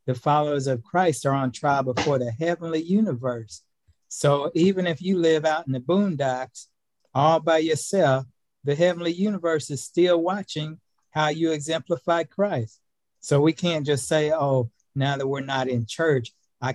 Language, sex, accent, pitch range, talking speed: English, male, American, 125-150 Hz, 165 wpm